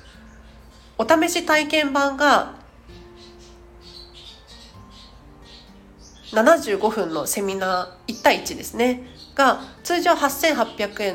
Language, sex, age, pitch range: Japanese, female, 40-59, 180-250 Hz